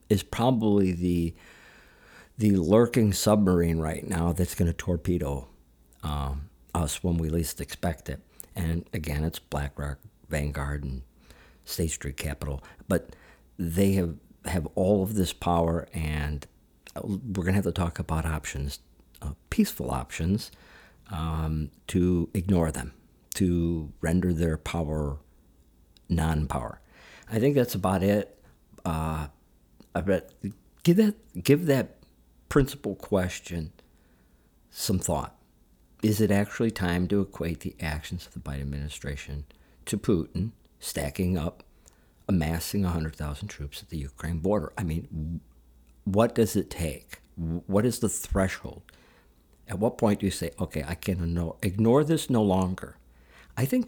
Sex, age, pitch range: male, 50-69, 70-95 Hz